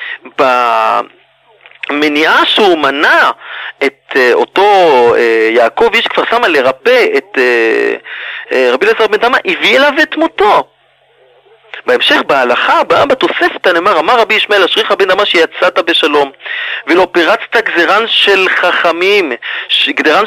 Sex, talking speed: male, 125 wpm